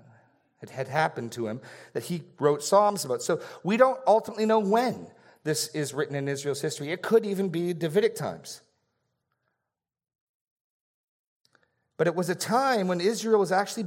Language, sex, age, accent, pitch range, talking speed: English, male, 40-59, American, 120-185 Hz, 160 wpm